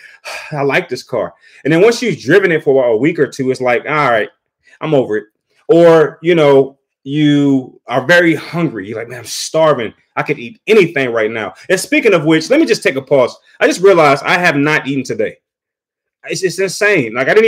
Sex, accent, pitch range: male, American, 135-180 Hz